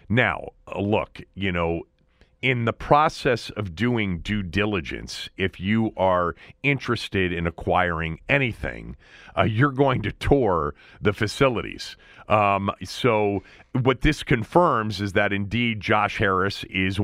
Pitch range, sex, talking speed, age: 95-120 Hz, male, 125 wpm, 40-59